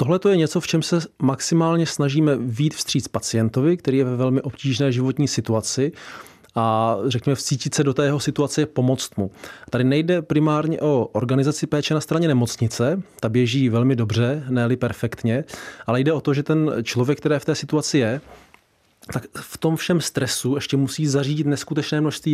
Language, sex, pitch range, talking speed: Czech, male, 120-140 Hz, 175 wpm